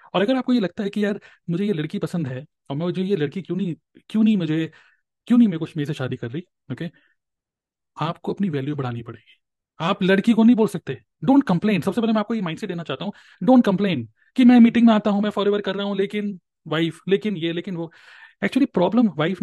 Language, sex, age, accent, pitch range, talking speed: Hindi, male, 30-49, native, 145-195 Hz, 245 wpm